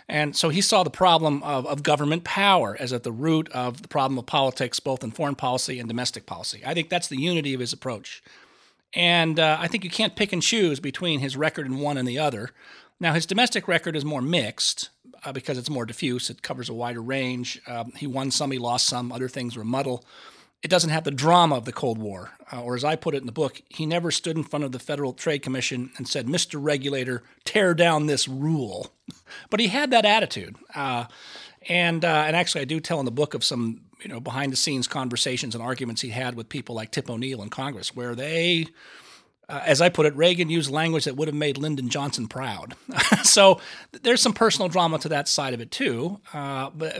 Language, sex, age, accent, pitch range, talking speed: English, male, 40-59, American, 130-170 Hz, 225 wpm